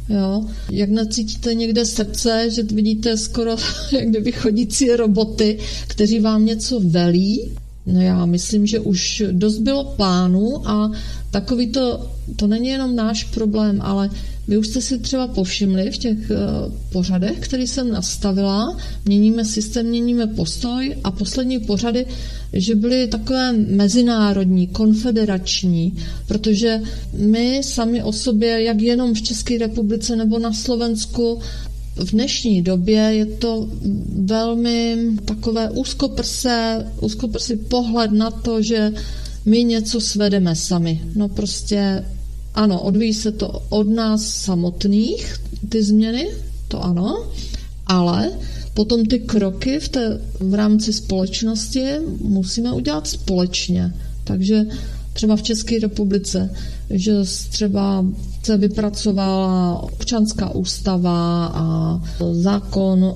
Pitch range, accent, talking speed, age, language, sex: 190-230 Hz, native, 115 wpm, 40-59, Czech, female